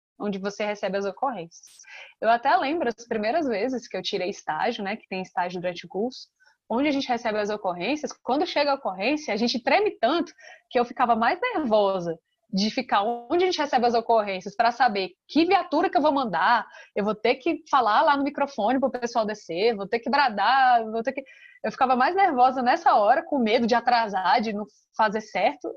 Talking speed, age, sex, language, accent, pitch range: 210 wpm, 20-39, female, Portuguese, Brazilian, 220-295 Hz